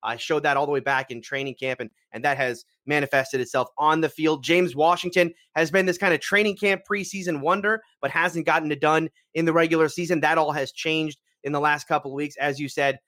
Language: English